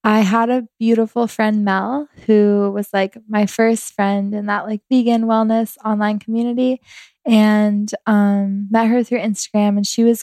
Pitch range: 205-225 Hz